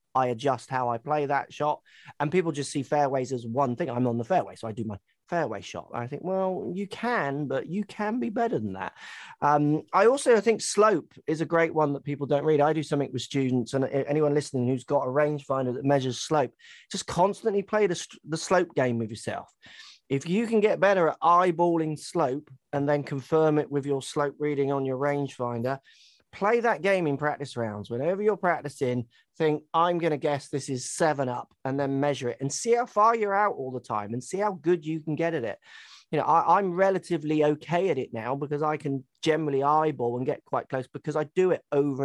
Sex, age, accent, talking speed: male, 30-49, British, 225 wpm